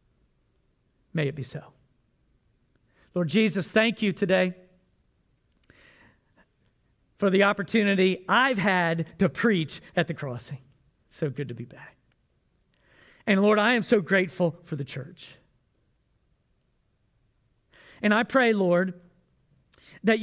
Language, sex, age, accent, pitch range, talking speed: English, male, 50-69, American, 135-195 Hz, 115 wpm